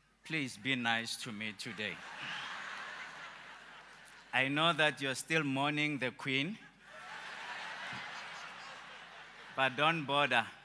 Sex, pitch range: male, 130-160 Hz